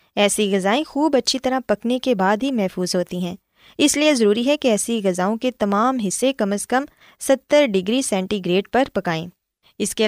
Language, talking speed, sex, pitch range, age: Urdu, 195 wpm, female, 190-270 Hz, 20-39